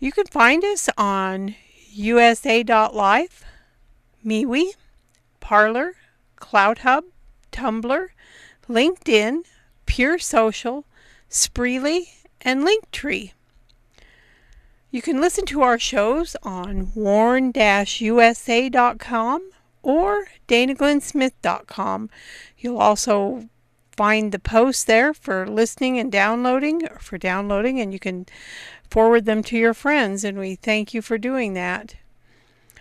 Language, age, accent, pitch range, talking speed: English, 50-69, American, 210-275 Hz, 100 wpm